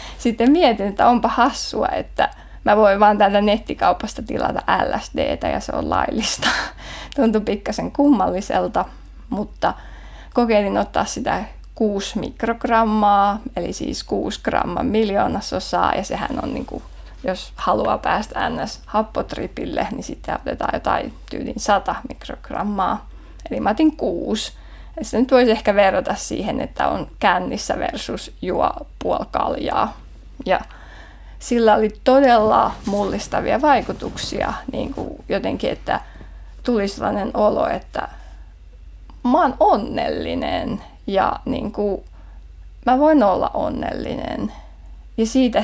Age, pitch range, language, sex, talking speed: 20-39, 205-245 Hz, Finnish, female, 120 wpm